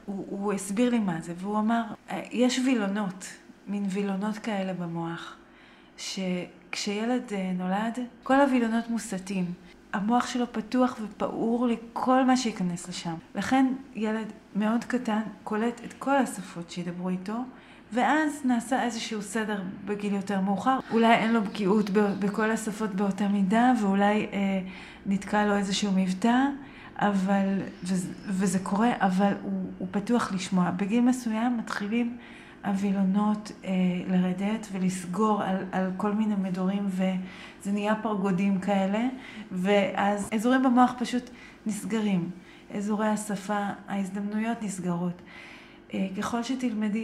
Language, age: Hebrew, 30-49